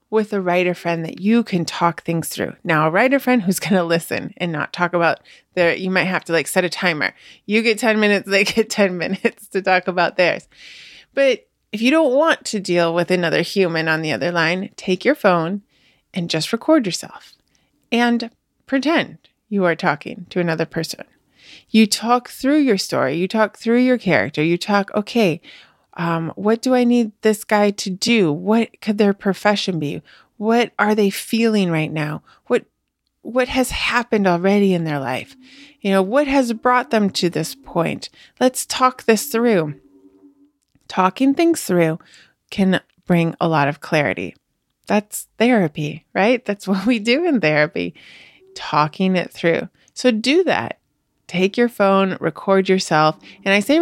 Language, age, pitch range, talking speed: English, 20-39, 175-235 Hz, 175 wpm